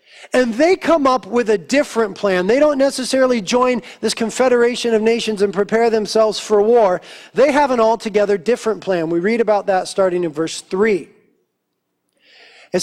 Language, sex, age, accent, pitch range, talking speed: English, male, 40-59, American, 190-250 Hz, 170 wpm